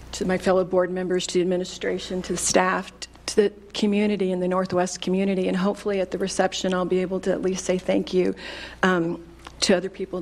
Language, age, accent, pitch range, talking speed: English, 40-59, American, 180-200 Hz, 210 wpm